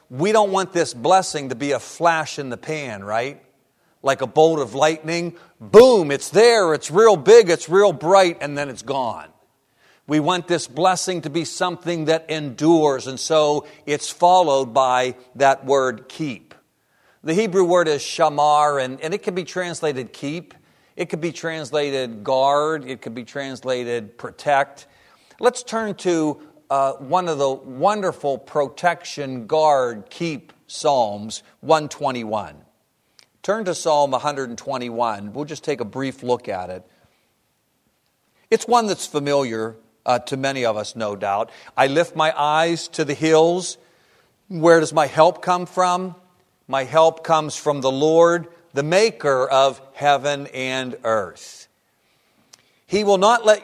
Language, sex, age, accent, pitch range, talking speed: English, male, 50-69, American, 135-175 Hz, 150 wpm